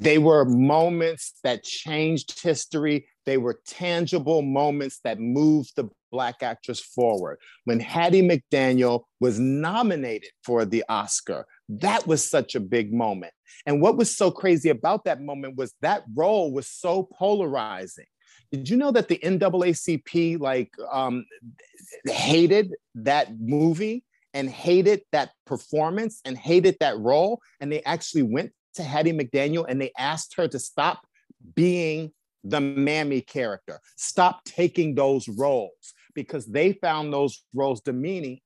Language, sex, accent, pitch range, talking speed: English, male, American, 140-185 Hz, 140 wpm